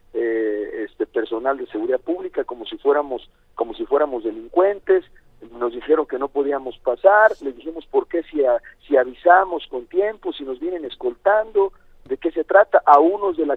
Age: 50-69